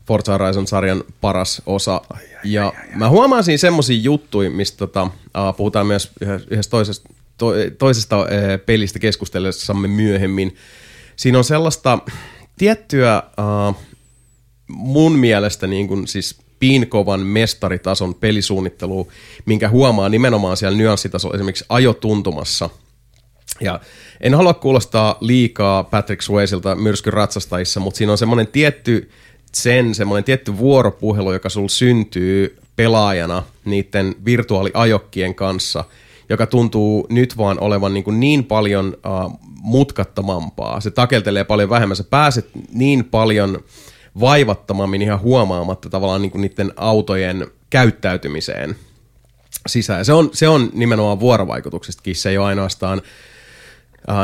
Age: 30-49